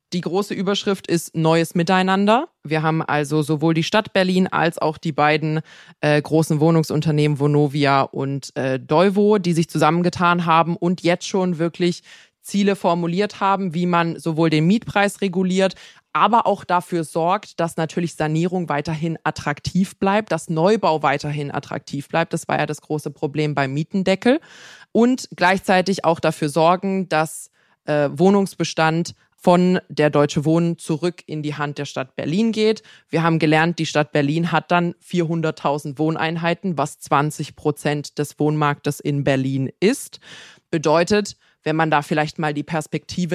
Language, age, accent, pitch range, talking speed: German, 20-39, German, 150-180 Hz, 150 wpm